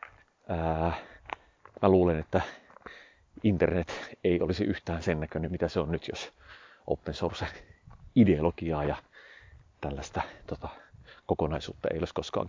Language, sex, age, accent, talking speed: Finnish, male, 40-59, native, 115 wpm